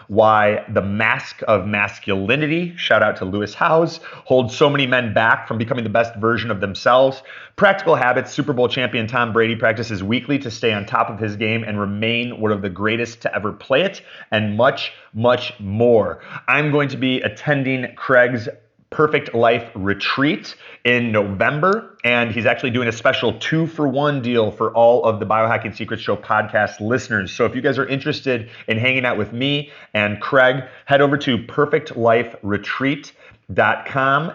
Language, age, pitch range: English, 30-49, 110-130 Hz